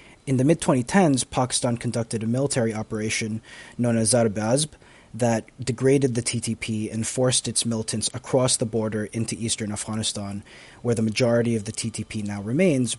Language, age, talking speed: English, 30-49, 150 wpm